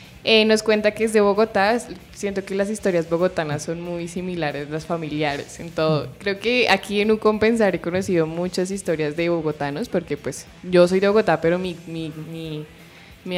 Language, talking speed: Spanish, 175 wpm